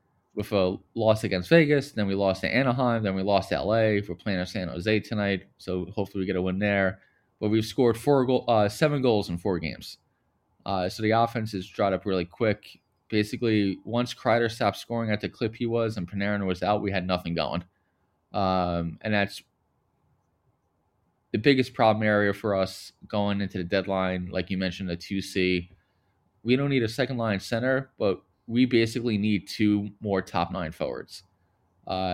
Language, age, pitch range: English, 20-39, 95-115 Hz